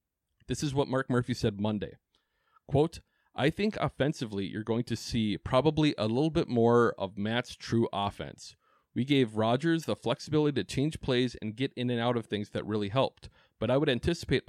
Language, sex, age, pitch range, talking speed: English, male, 30-49, 105-130 Hz, 190 wpm